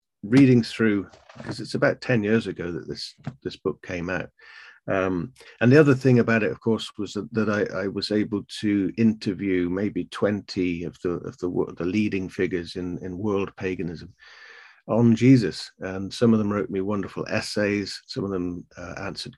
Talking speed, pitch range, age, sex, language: 185 wpm, 95-115 Hz, 50-69, male, English